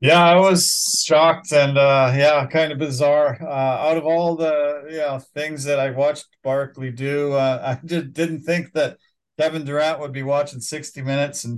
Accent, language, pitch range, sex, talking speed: American, English, 155-205 Hz, male, 190 wpm